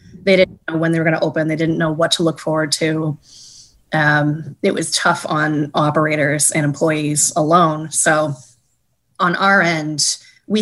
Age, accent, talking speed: 20-39, American, 175 wpm